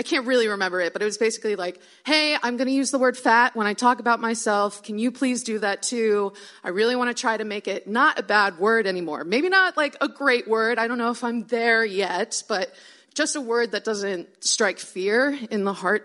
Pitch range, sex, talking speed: 185-245 Hz, female, 245 wpm